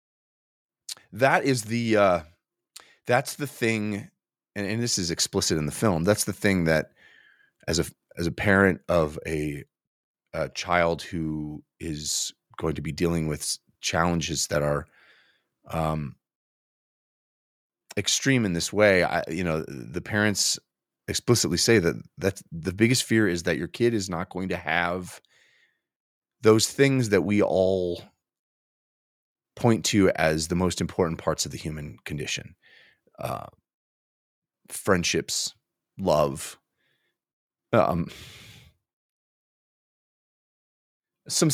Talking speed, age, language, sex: 125 wpm, 30-49, English, male